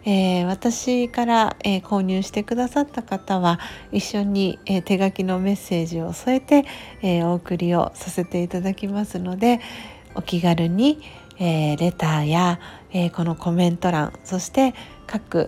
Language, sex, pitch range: Japanese, female, 175-220 Hz